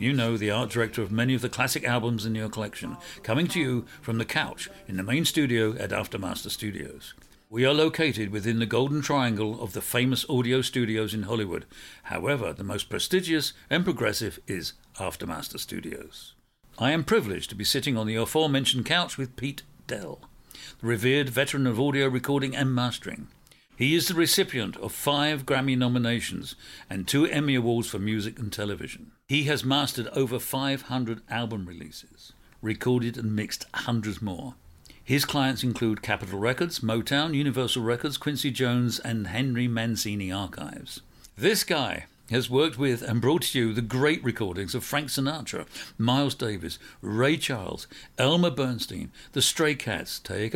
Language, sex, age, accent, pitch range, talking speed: English, male, 60-79, British, 110-140 Hz, 165 wpm